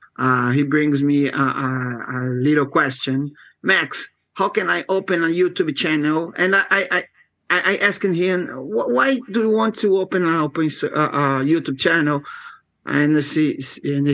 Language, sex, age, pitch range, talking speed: English, male, 50-69, 140-160 Hz, 155 wpm